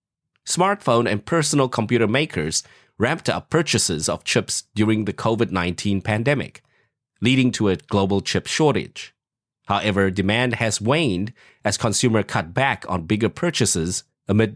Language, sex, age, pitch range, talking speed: English, male, 30-49, 100-125 Hz, 130 wpm